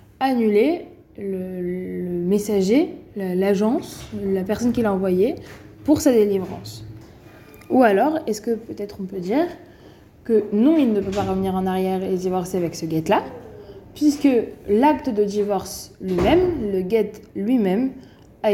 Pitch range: 185-235 Hz